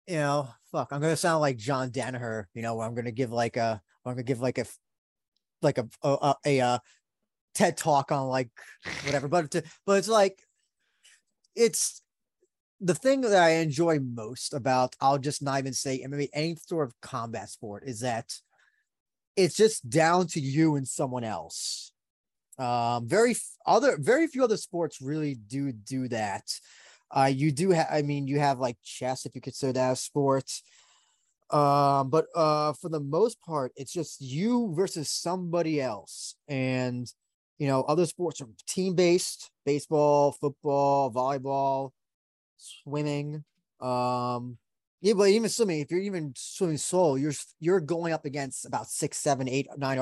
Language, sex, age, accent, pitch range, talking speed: English, male, 20-39, American, 130-160 Hz, 175 wpm